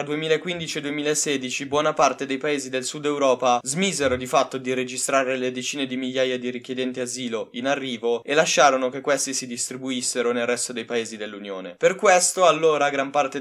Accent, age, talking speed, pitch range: native, 10-29, 170 wpm, 130-160 Hz